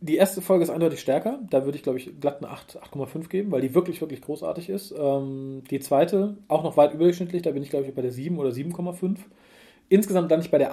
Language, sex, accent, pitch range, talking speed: German, male, German, 140-180 Hz, 235 wpm